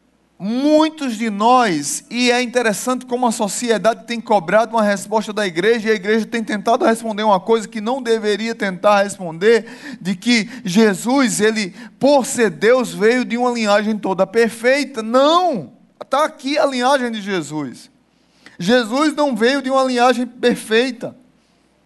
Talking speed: 150 wpm